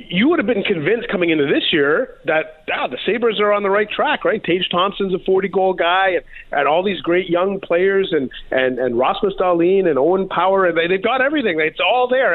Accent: American